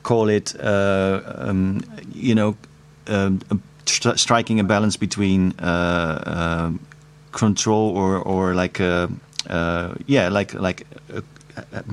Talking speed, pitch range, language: 120 wpm, 85-110 Hz, English